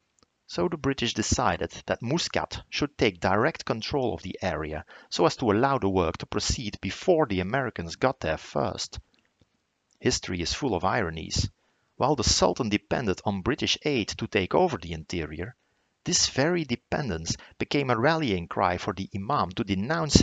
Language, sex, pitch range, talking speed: English, male, 90-125 Hz, 165 wpm